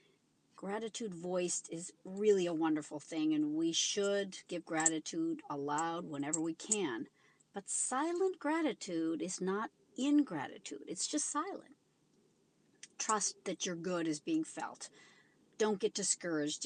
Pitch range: 165-270 Hz